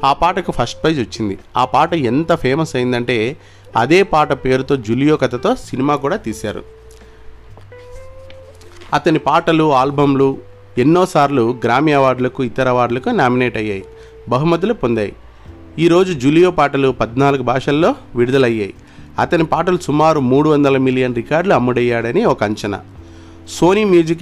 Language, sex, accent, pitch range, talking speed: Telugu, male, native, 110-145 Hz, 115 wpm